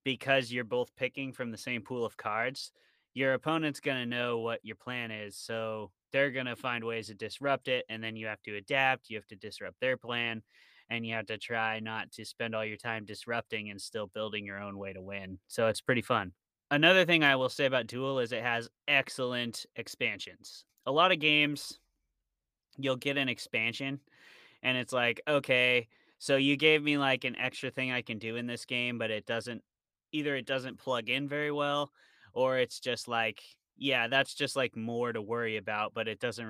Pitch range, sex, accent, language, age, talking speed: 110-135 Hz, male, American, English, 20-39, 210 wpm